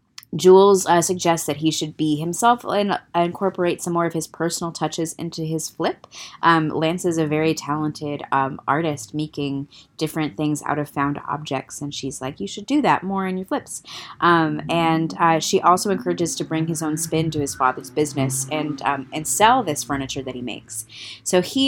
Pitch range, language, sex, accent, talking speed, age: 145-180 Hz, English, female, American, 195 wpm, 20-39